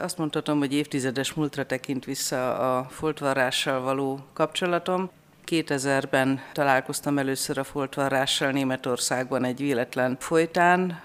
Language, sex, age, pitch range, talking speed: Hungarian, female, 50-69, 135-150 Hz, 110 wpm